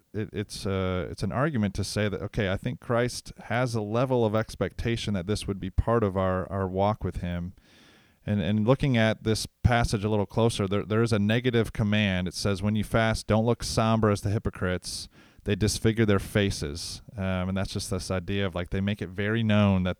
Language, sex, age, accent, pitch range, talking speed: English, male, 30-49, American, 95-110 Hz, 220 wpm